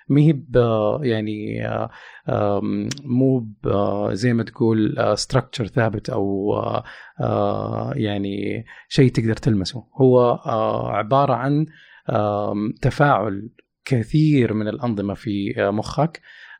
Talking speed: 75 wpm